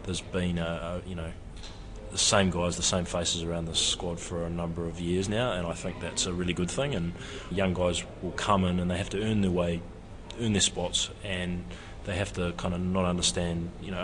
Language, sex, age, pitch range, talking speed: English, male, 20-39, 90-95 Hz, 235 wpm